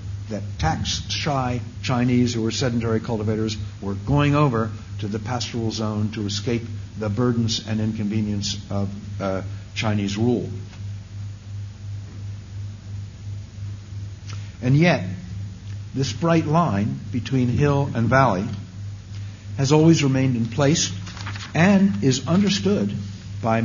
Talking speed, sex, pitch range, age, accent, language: 105 wpm, male, 100-125 Hz, 60-79, American, English